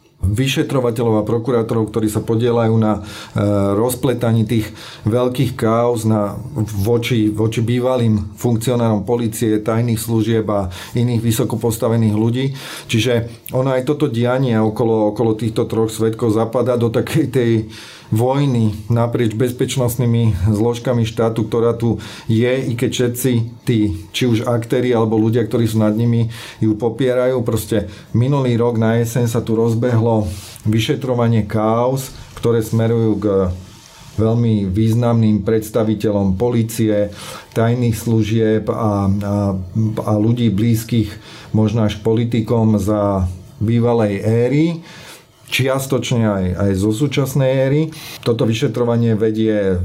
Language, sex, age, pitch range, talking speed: Slovak, male, 30-49, 110-120 Hz, 120 wpm